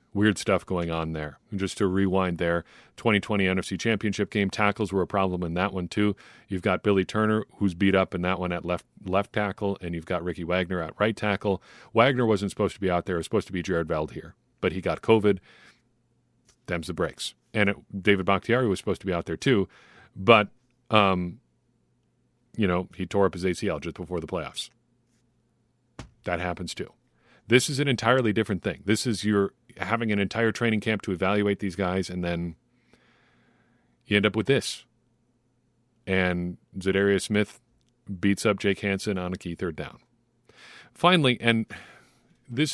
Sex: male